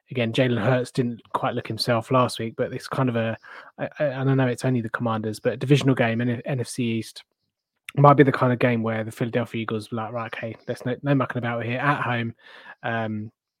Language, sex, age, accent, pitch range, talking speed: English, male, 20-39, British, 110-125 Hz, 240 wpm